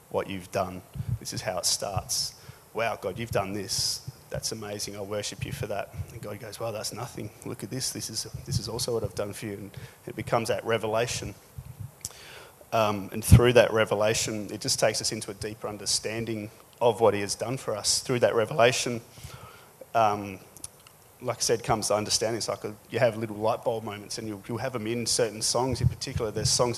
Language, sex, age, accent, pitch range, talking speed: English, male, 30-49, Australian, 105-125 Hz, 215 wpm